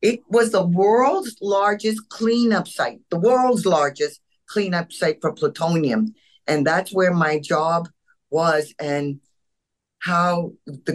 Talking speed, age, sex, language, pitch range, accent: 125 wpm, 50-69, female, English, 150-185 Hz, American